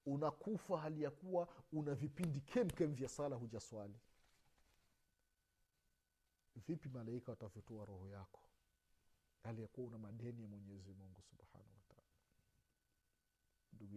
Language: Swahili